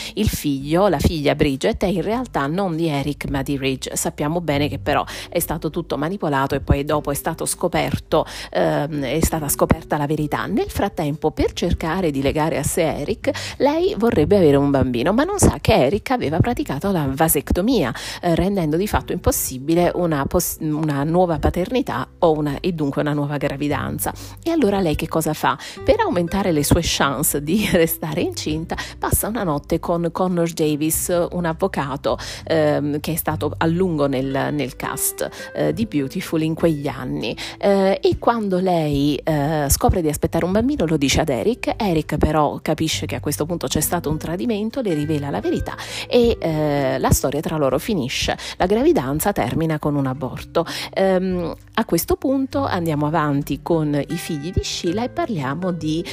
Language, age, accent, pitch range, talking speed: Italian, 40-59, native, 145-185 Hz, 180 wpm